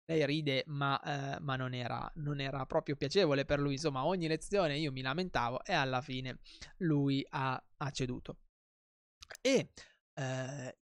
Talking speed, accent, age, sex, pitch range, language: 155 wpm, native, 20-39, male, 130-155 Hz, Italian